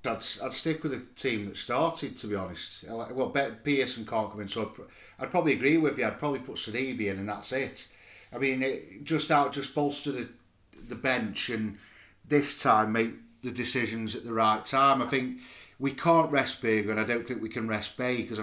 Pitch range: 105-135 Hz